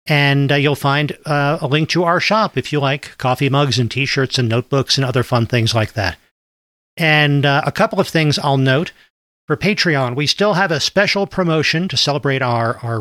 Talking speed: 205 wpm